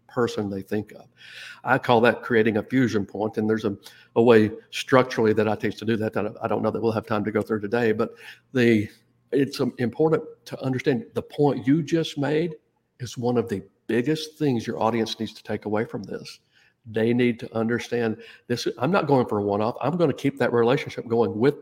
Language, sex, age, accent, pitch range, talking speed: English, male, 50-69, American, 110-140 Hz, 220 wpm